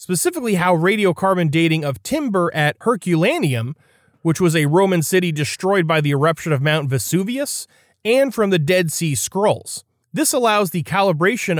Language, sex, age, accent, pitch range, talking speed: English, male, 30-49, American, 145-185 Hz, 155 wpm